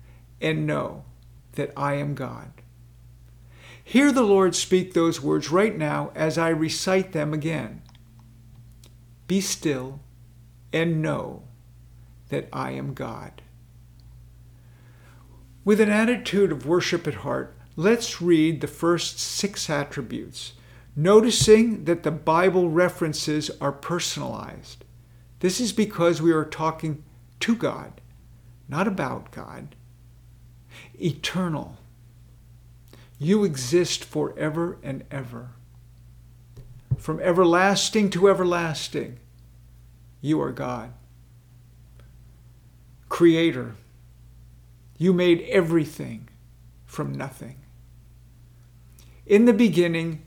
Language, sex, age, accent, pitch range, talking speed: English, male, 50-69, American, 120-165 Hz, 95 wpm